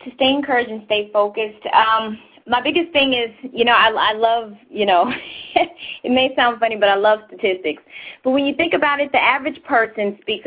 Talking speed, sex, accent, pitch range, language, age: 205 wpm, female, American, 200-265 Hz, English, 20-39